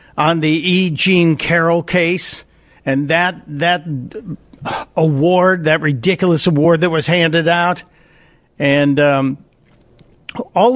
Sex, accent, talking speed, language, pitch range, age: male, American, 110 wpm, English, 150-180 Hz, 50-69